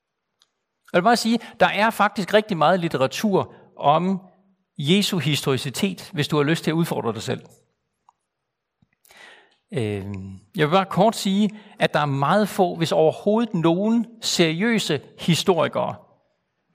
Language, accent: Danish, native